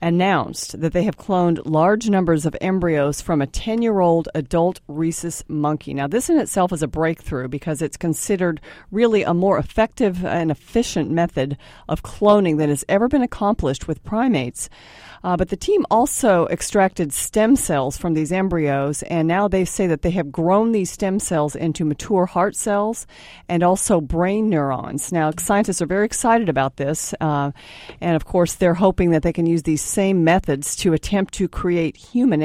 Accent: American